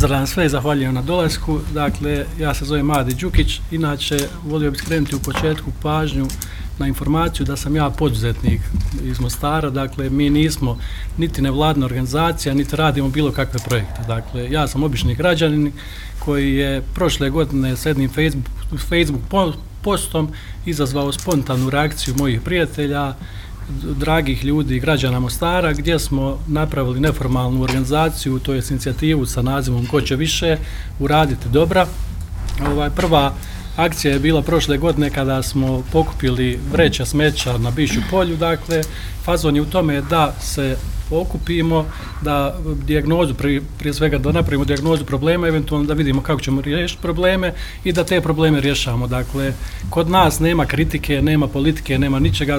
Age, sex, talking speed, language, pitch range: 40-59, male, 140 wpm, Croatian, 135-155 Hz